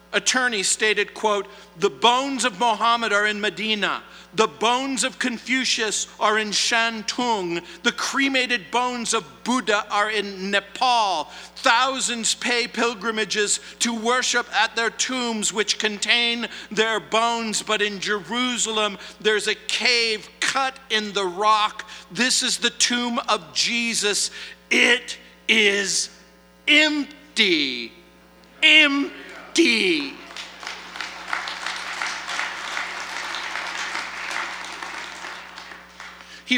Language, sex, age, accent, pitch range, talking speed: English, male, 50-69, American, 205-250 Hz, 95 wpm